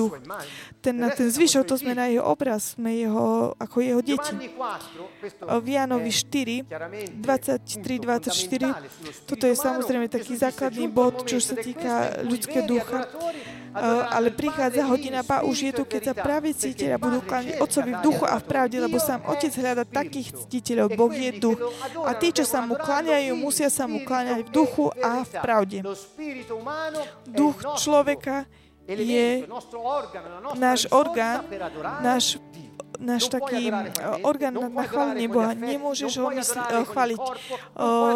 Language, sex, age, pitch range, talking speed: Slovak, female, 20-39, 235-275 Hz, 140 wpm